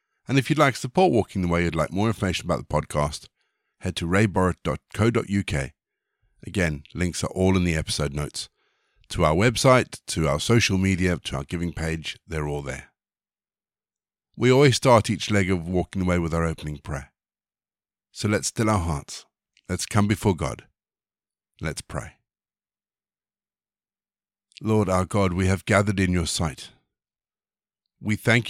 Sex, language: male, English